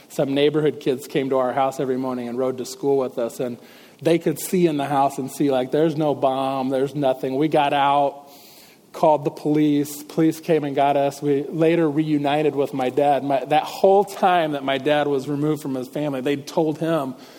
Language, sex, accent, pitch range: English, male, American, 135-165 Hz